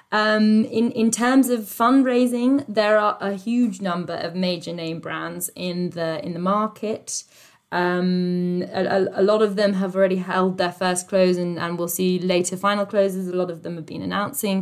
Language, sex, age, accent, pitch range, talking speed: English, female, 20-39, British, 175-210 Hz, 190 wpm